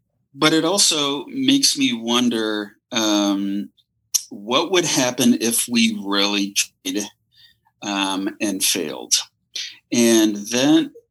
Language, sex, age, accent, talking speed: English, male, 30-49, American, 105 wpm